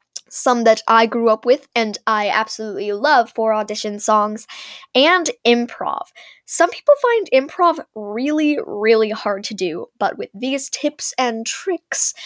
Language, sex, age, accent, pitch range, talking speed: English, female, 10-29, American, 220-285 Hz, 145 wpm